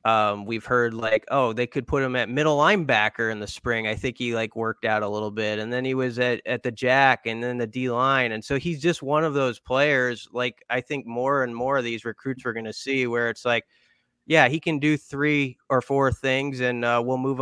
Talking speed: 250 wpm